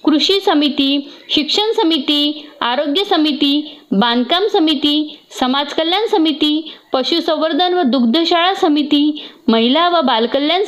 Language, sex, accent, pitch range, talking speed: Marathi, female, native, 285-340 Hz, 100 wpm